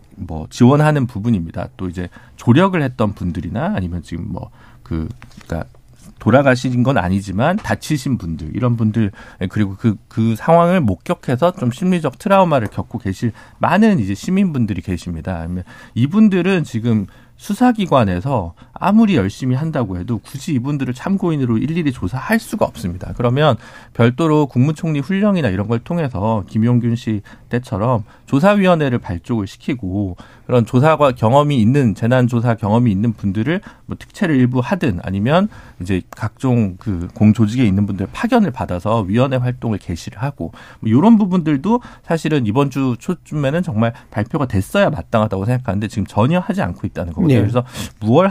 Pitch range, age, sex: 105-145 Hz, 40-59, male